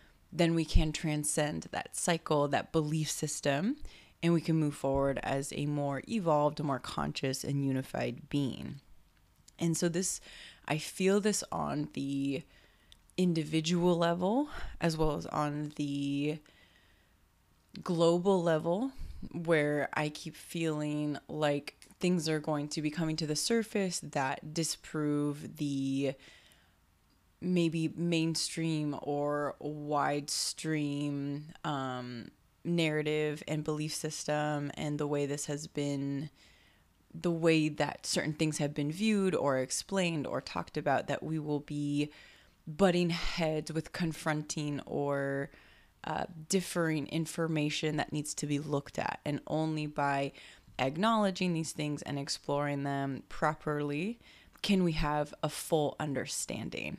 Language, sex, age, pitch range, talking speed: English, female, 20-39, 140-165 Hz, 125 wpm